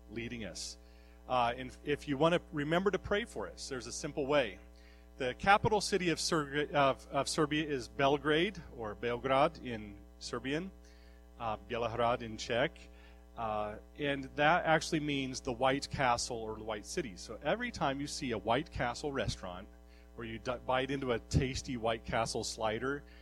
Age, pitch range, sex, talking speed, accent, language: 40-59, 105-150 Hz, male, 170 wpm, American, English